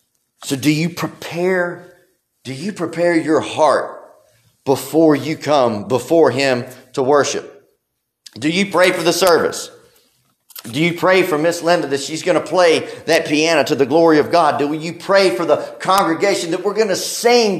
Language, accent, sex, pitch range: English, American, male, 150-205 Hz